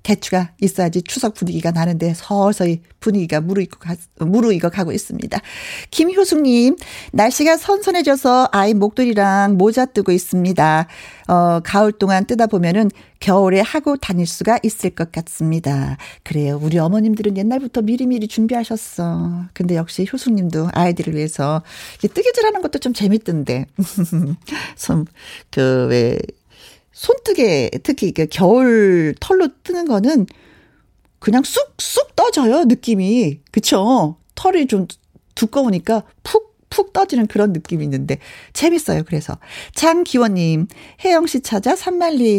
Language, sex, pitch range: Korean, female, 180-275 Hz